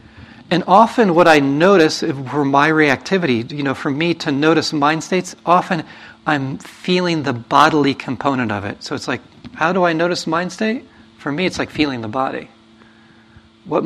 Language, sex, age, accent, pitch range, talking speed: English, male, 40-59, American, 115-170 Hz, 180 wpm